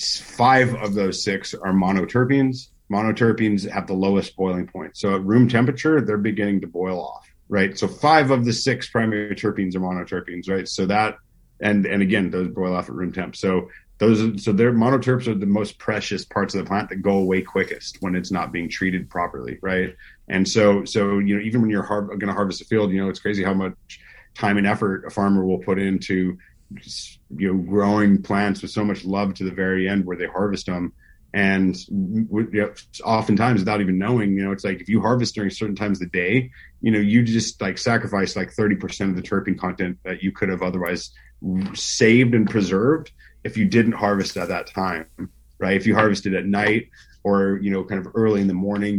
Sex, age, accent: male, 40-59, American